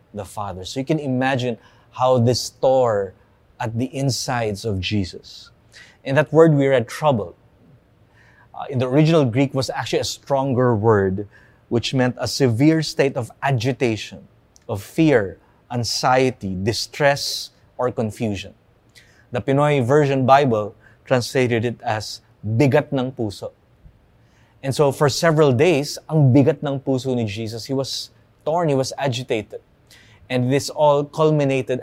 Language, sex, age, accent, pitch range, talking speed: English, male, 20-39, Filipino, 115-135 Hz, 140 wpm